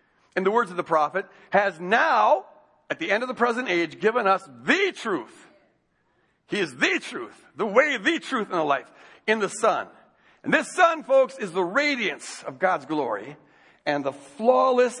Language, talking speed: English, 185 wpm